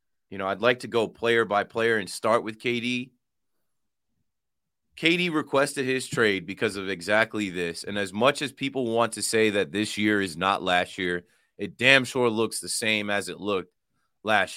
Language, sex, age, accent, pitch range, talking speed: English, male, 30-49, American, 100-120 Hz, 190 wpm